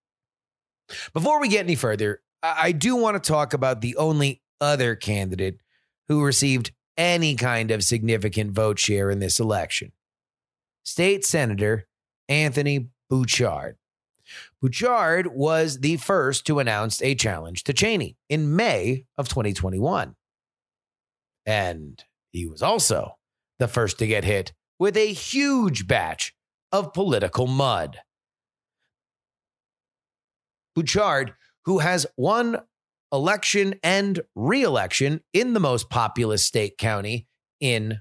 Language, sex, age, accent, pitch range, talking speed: English, male, 30-49, American, 110-165 Hz, 115 wpm